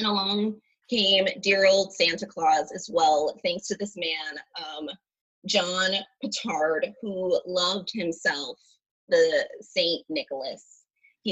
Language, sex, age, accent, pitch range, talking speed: English, female, 20-39, American, 190-280 Hz, 115 wpm